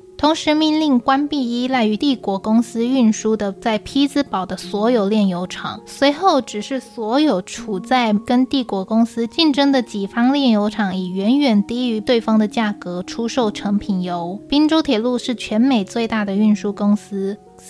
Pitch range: 205-265 Hz